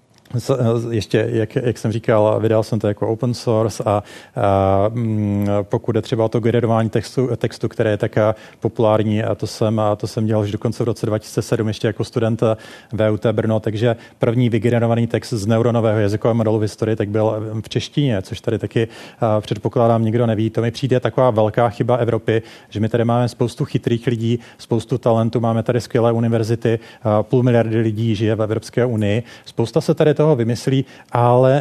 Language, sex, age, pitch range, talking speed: Czech, male, 30-49, 110-120 Hz, 185 wpm